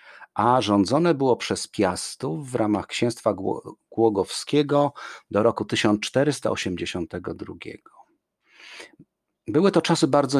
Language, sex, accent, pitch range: Polish, male, native, 100-130 Hz